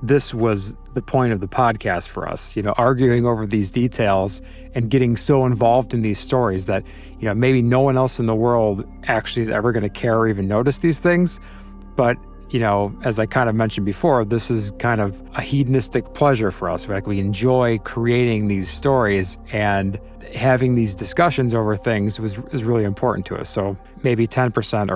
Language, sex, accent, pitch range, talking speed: English, male, American, 95-120 Hz, 195 wpm